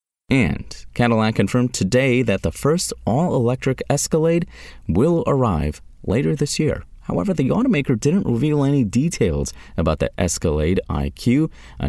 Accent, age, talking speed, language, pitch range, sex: American, 30-49, 130 wpm, English, 90-135 Hz, male